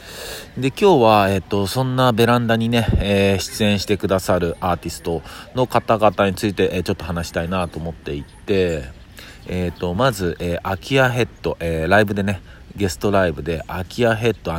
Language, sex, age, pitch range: Japanese, male, 50-69, 80-105 Hz